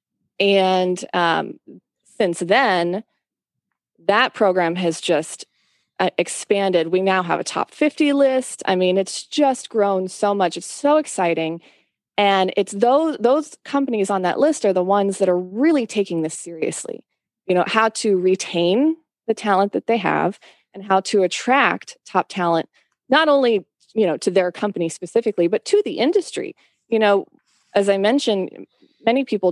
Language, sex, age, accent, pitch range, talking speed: English, female, 20-39, American, 180-235 Hz, 160 wpm